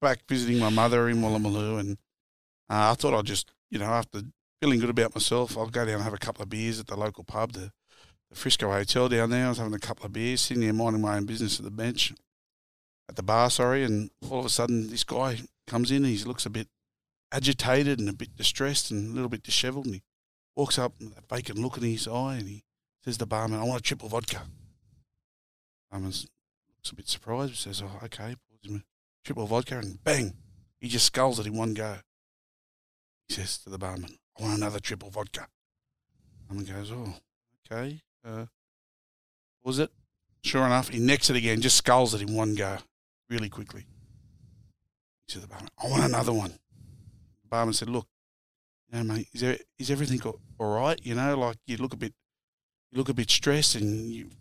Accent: Australian